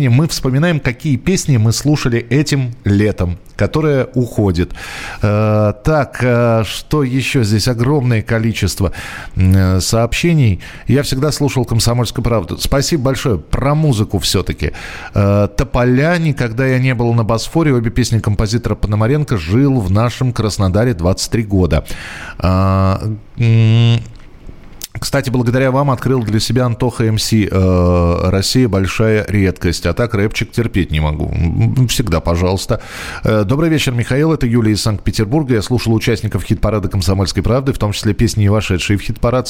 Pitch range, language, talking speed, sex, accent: 100-130 Hz, Russian, 130 wpm, male, native